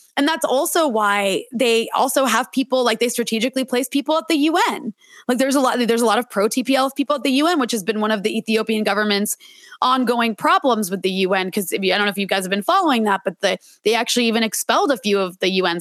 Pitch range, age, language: 205-280 Hz, 20-39, English